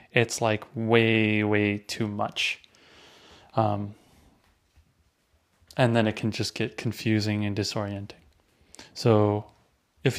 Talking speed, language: 105 wpm, English